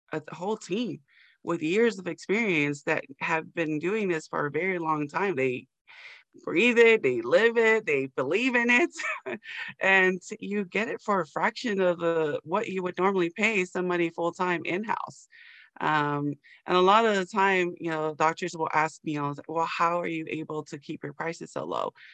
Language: English